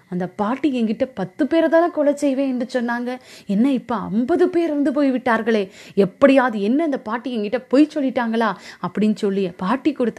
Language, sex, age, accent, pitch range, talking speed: Tamil, female, 20-39, native, 190-255 Hz, 160 wpm